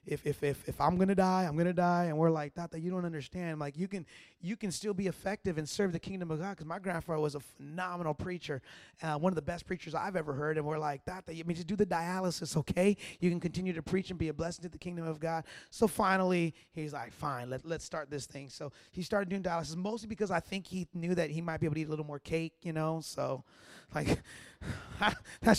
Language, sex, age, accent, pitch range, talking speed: English, male, 30-49, American, 155-195 Hz, 260 wpm